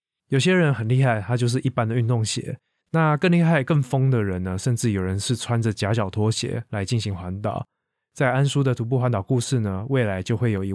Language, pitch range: Chinese, 105-130 Hz